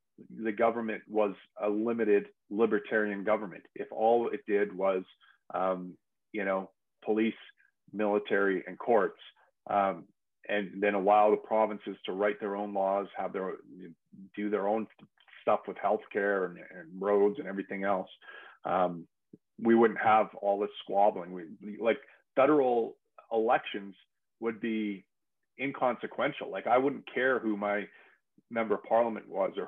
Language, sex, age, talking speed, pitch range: English, male, 40-59, 140 wpm, 100-115 Hz